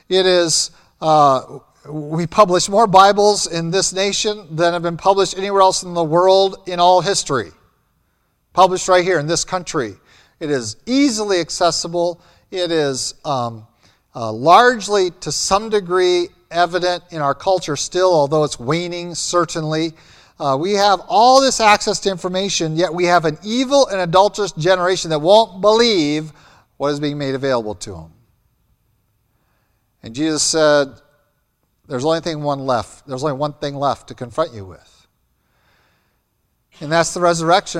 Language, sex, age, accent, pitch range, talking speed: English, male, 40-59, American, 150-195 Hz, 150 wpm